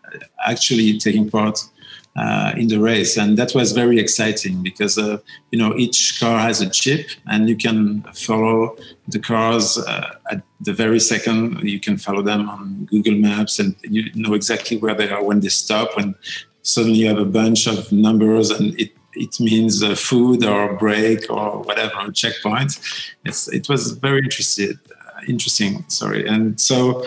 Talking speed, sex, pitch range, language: 170 wpm, male, 105-120 Hz, English